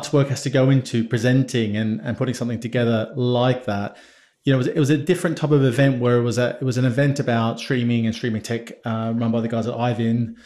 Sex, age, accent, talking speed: male, 30-49, British, 255 wpm